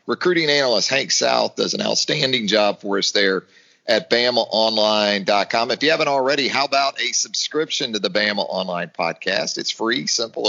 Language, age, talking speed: English, 40-59, 165 wpm